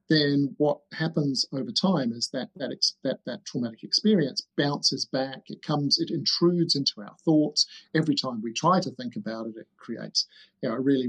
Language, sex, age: English, male, 50-69